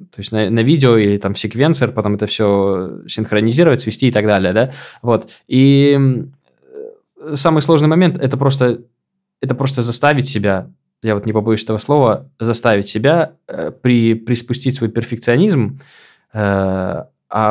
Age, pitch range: 20-39, 110-140 Hz